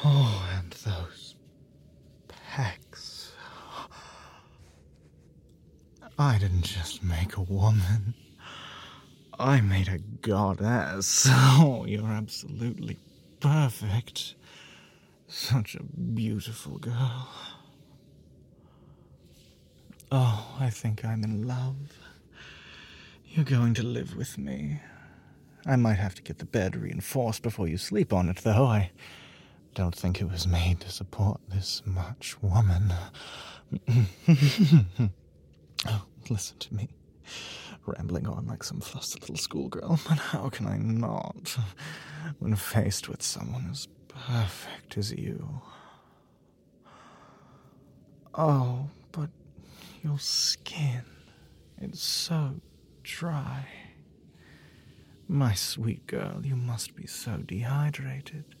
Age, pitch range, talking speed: 30-49, 95-135 Hz, 100 wpm